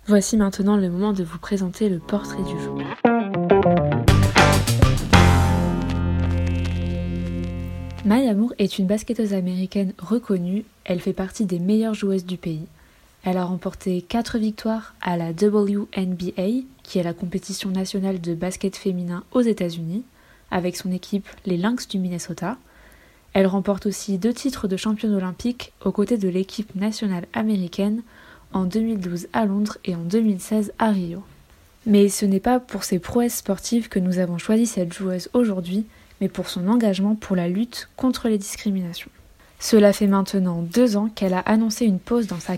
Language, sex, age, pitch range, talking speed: French, female, 20-39, 180-220 Hz, 155 wpm